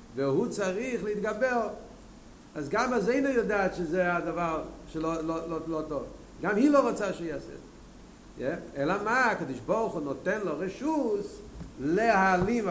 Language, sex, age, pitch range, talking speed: Hebrew, male, 50-69, 160-220 Hz, 140 wpm